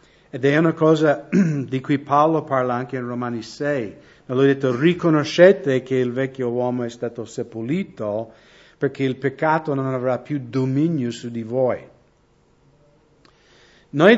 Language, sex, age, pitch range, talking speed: English, male, 50-69, 125-160 Hz, 145 wpm